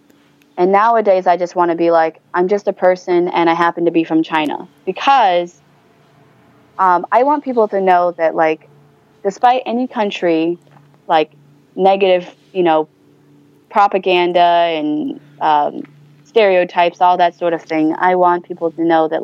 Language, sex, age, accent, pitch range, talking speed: English, female, 20-39, American, 165-190 Hz, 155 wpm